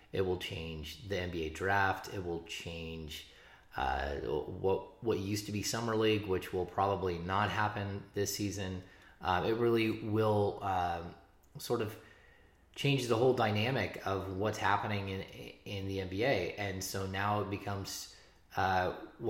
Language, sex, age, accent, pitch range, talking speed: English, male, 20-39, American, 90-105 Hz, 150 wpm